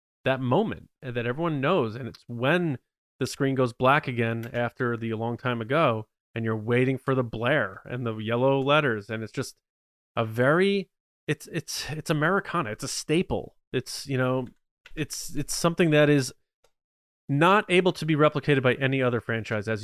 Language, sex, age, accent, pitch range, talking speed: English, male, 30-49, American, 115-135 Hz, 170 wpm